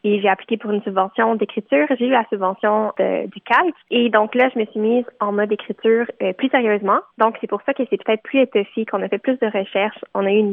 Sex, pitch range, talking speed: female, 205-240 Hz, 260 wpm